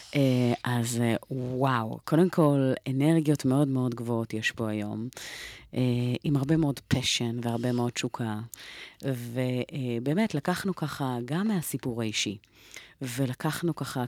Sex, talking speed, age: female, 130 wpm, 30-49